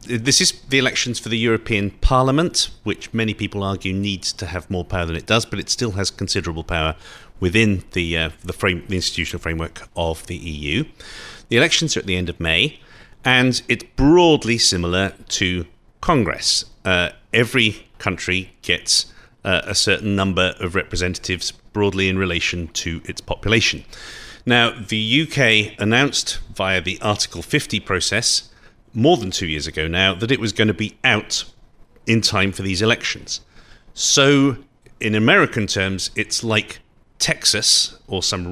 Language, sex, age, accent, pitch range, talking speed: English, male, 40-59, British, 90-115 Hz, 160 wpm